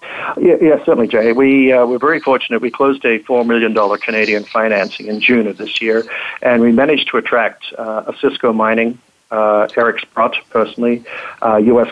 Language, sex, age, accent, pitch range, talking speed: English, male, 60-79, American, 105-120 Hz, 190 wpm